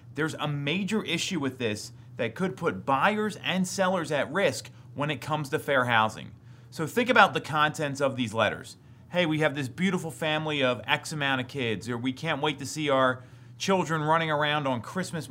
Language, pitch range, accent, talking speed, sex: English, 125-185 Hz, American, 200 wpm, male